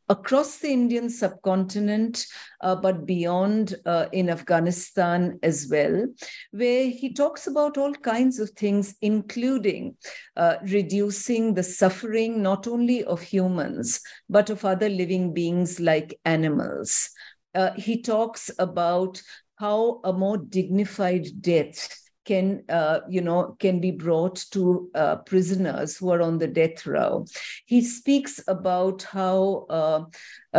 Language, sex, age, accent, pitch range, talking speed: English, female, 50-69, Indian, 175-215 Hz, 130 wpm